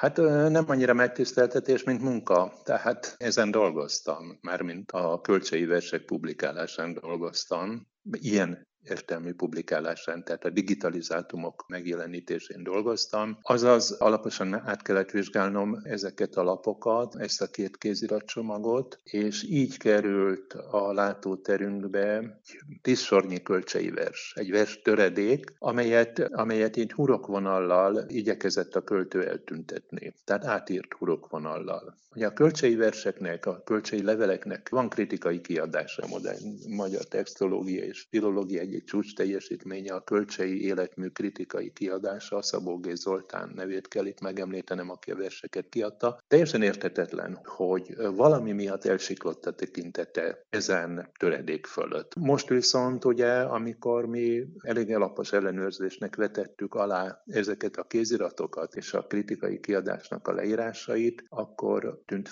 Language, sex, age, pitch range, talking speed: Hungarian, male, 60-79, 95-125 Hz, 120 wpm